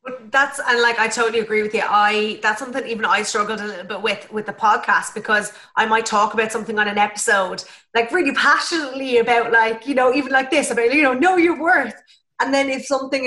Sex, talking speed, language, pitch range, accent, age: female, 230 wpm, English, 215-240 Hz, Irish, 30-49